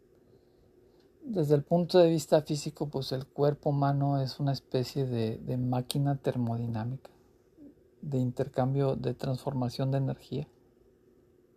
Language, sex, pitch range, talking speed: Spanish, male, 130-155 Hz, 120 wpm